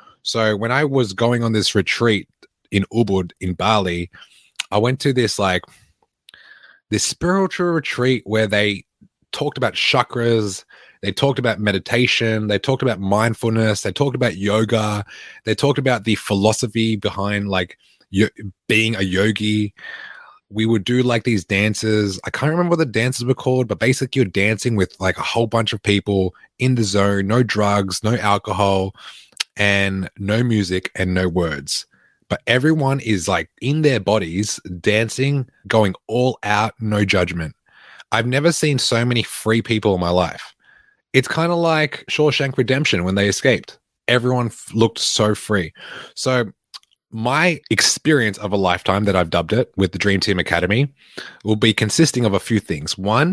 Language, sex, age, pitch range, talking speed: English, male, 20-39, 100-125 Hz, 165 wpm